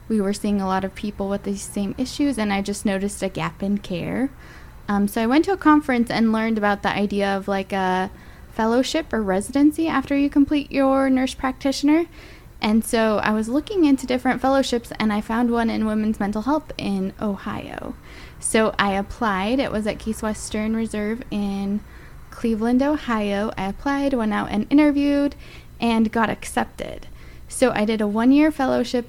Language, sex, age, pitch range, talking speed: English, female, 10-29, 205-265 Hz, 180 wpm